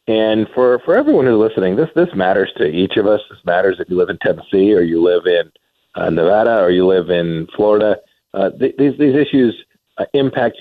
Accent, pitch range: American, 110-155 Hz